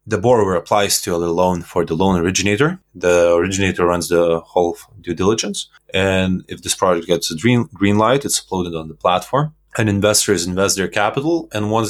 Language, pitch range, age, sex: Romanian, 85-105 Hz, 20-39, male